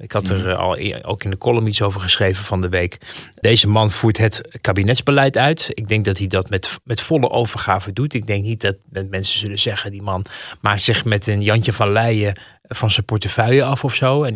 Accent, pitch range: Dutch, 105-125 Hz